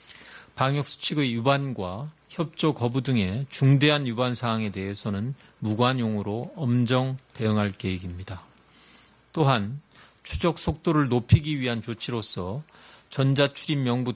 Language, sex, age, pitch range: Korean, male, 40-59, 110-145 Hz